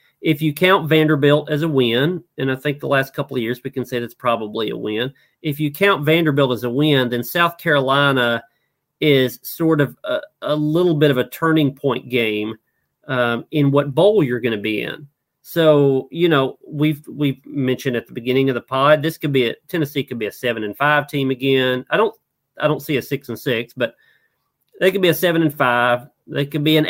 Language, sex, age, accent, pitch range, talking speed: English, male, 40-59, American, 130-155 Hz, 220 wpm